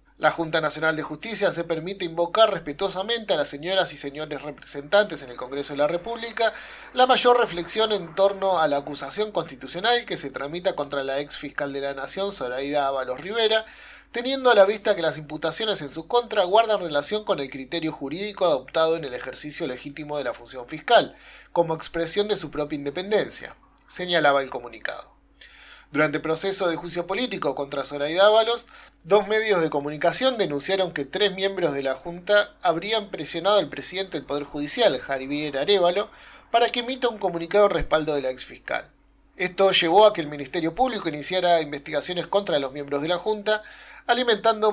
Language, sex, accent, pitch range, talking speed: Spanish, male, Argentinian, 150-210 Hz, 175 wpm